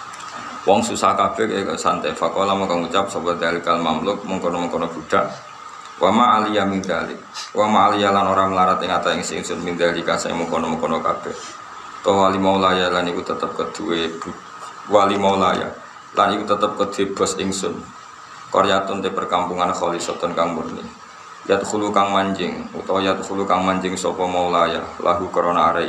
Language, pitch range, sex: Indonesian, 95-110 Hz, male